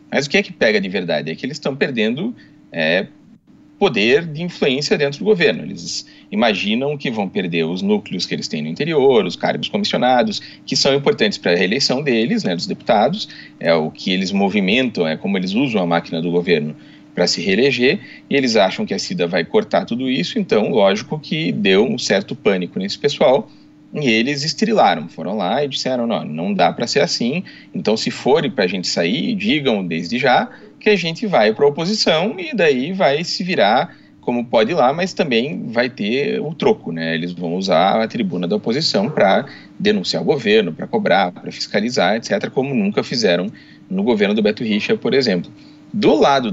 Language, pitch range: Portuguese, 130-215 Hz